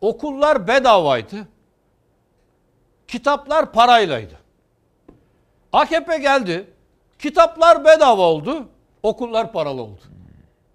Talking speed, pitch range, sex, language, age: 65 wpm, 185-280 Hz, male, Turkish, 60-79